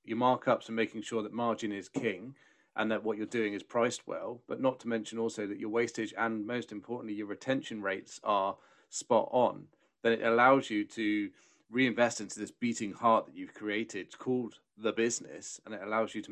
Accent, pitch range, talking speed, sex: British, 105-125 Hz, 205 wpm, male